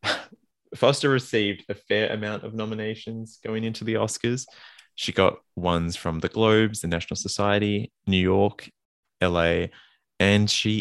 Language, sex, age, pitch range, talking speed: English, male, 20-39, 85-105 Hz, 140 wpm